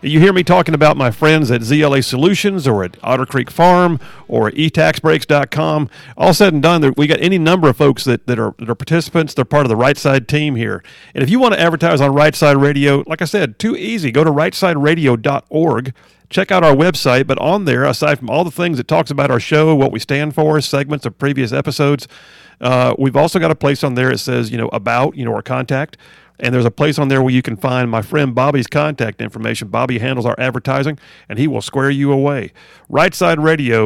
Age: 50-69